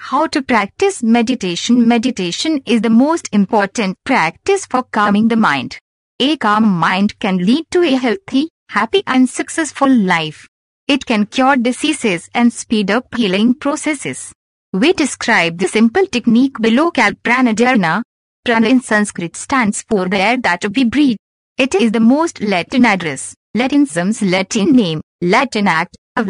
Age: 50-69